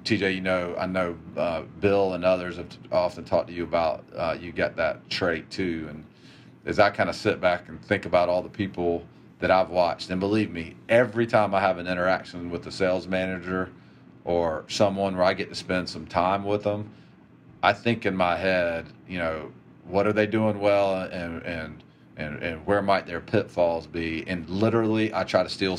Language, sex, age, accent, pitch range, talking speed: English, male, 40-59, American, 85-100 Hz, 210 wpm